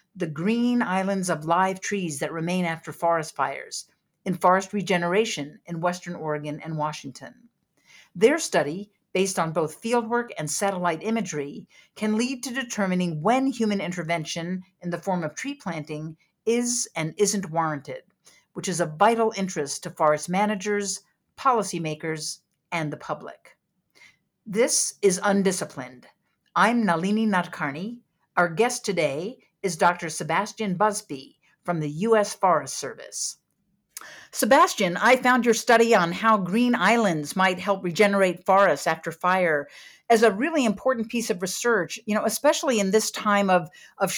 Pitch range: 170-220 Hz